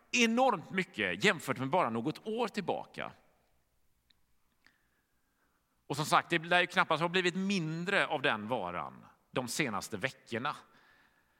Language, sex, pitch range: Swedish, male, 155-225 Hz